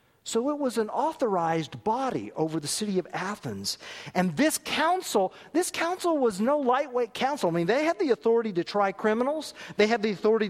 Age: 40-59